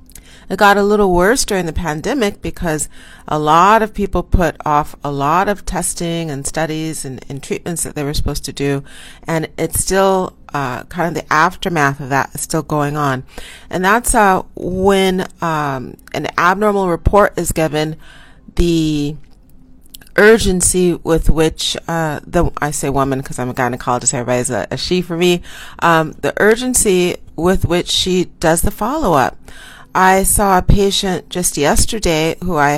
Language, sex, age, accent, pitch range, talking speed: English, female, 40-59, American, 145-185 Hz, 165 wpm